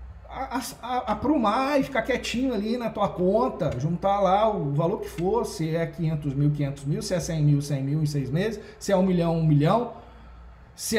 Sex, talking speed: male, 220 wpm